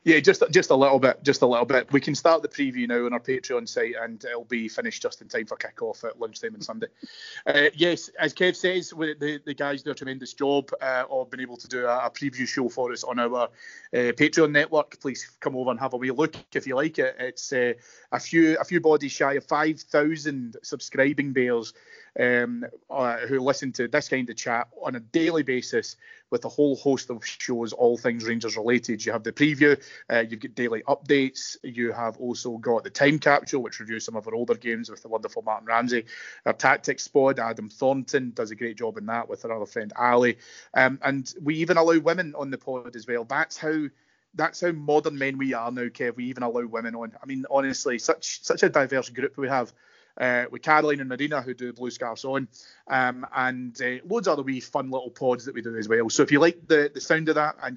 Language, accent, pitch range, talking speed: English, British, 120-150 Hz, 230 wpm